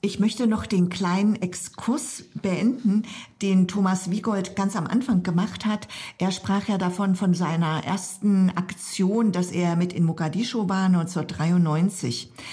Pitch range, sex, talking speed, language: 175-215 Hz, female, 145 wpm, German